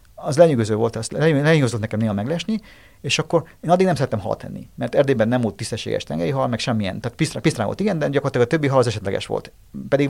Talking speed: 230 wpm